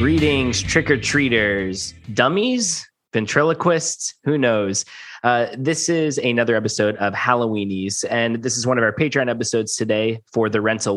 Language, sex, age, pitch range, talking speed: English, male, 20-39, 105-130 Hz, 135 wpm